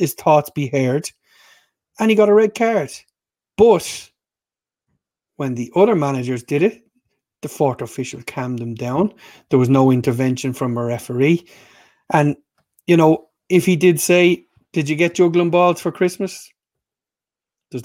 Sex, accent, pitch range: male, Irish, 130-160 Hz